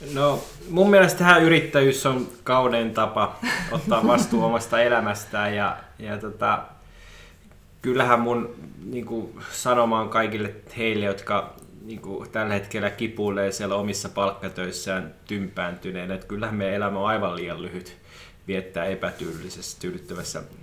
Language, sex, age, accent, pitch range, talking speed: Finnish, male, 20-39, native, 100-120 Hz, 115 wpm